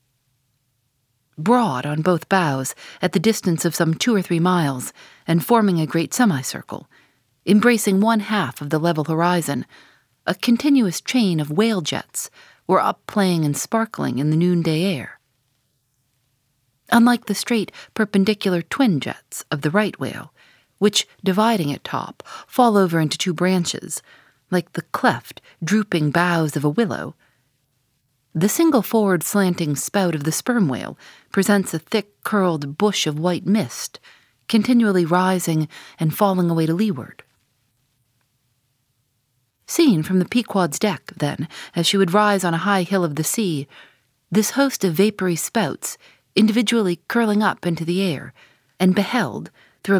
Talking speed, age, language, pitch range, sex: 145 wpm, 40-59, English, 145-205 Hz, female